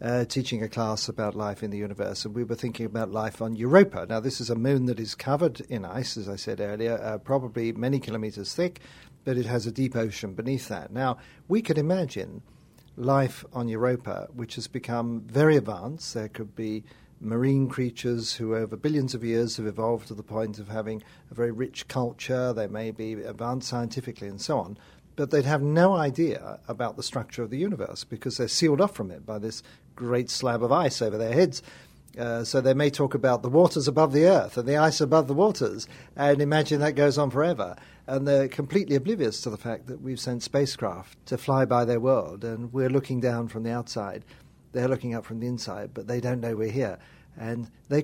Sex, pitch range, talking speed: male, 115-140 Hz, 215 wpm